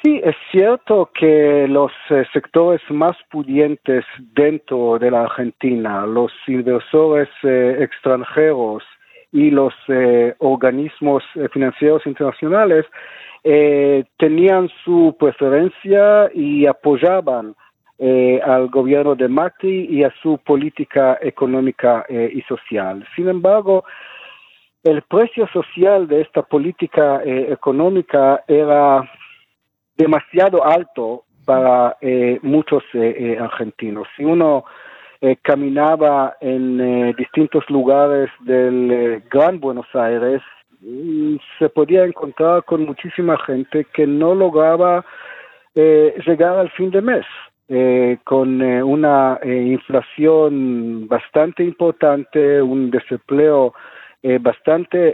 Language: Spanish